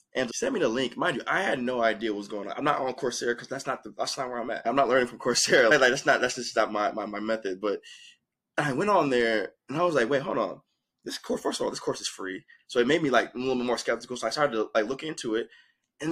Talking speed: 310 wpm